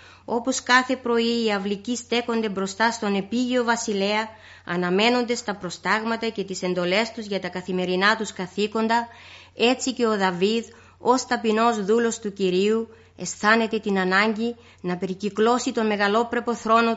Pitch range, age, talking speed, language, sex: 195-235 Hz, 20-39, 140 wpm, Greek, female